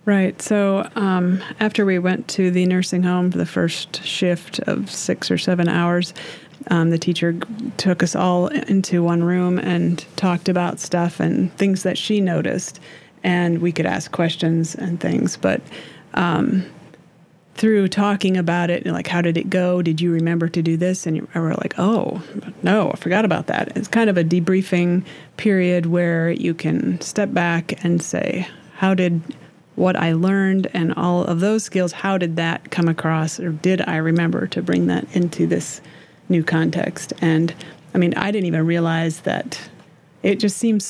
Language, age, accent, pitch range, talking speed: English, 30-49, American, 170-195 Hz, 175 wpm